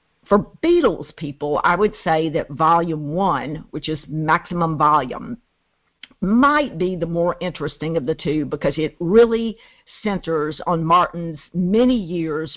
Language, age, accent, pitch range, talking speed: English, 50-69, American, 155-195 Hz, 140 wpm